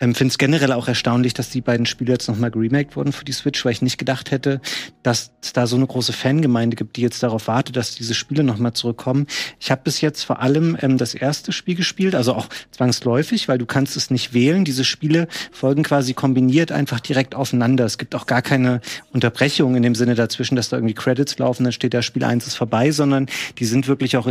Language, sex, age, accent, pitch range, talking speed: German, male, 40-59, German, 125-145 Hz, 235 wpm